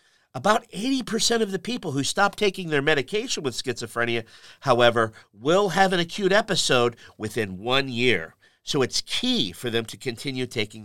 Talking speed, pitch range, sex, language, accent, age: 160 wpm, 120-195 Hz, male, English, American, 50-69